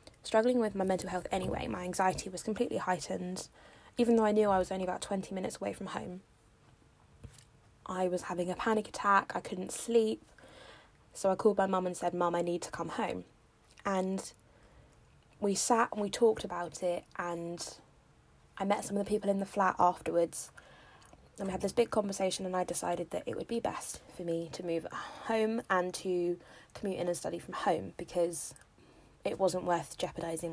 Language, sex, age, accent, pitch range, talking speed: English, female, 20-39, British, 175-210 Hz, 190 wpm